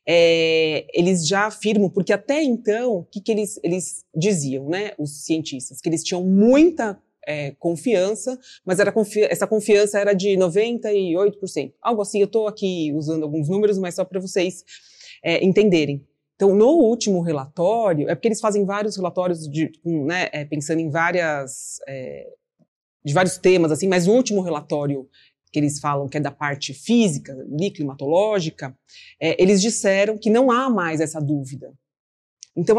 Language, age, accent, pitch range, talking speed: Portuguese, 30-49, Brazilian, 160-215 Hz, 165 wpm